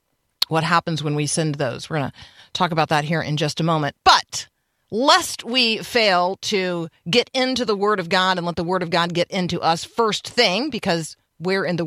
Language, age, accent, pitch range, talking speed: English, 40-59, American, 155-200 Hz, 215 wpm